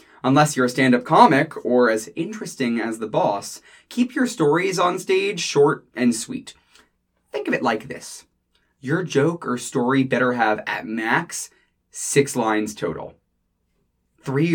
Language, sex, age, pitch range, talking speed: English, male, 20-39, 120-165 Hz, 150 wpm